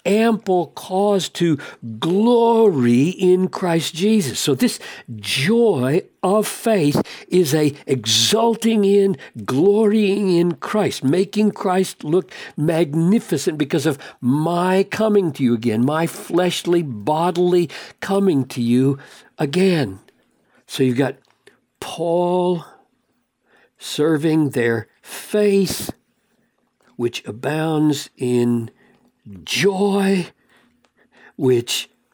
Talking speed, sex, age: 90 wpm, male, 60-79